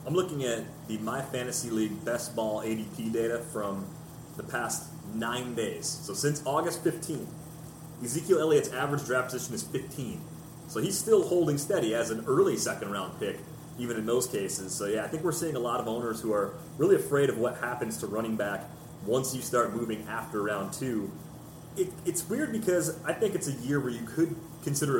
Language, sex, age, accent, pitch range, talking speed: English, male, 30-49, American, 120-160 Hz, 195 wpm